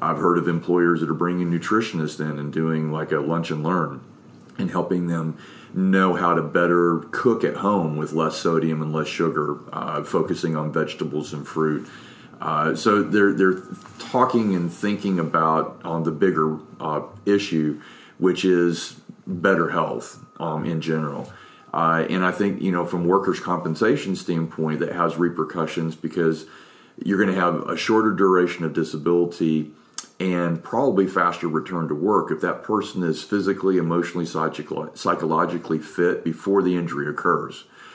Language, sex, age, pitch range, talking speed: English, male, 40-59, 80-90 Hz, 160 wpm